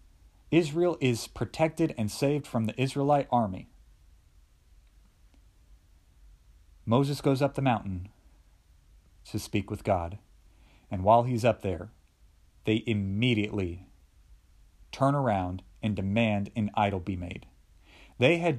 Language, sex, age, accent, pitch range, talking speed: English, male, 40-59, American, 85-115 Hz, 115 wpm